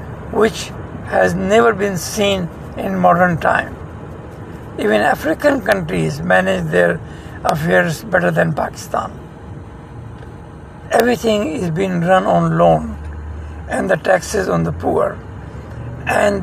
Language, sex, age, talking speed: English, male, 60-79, 110 wpm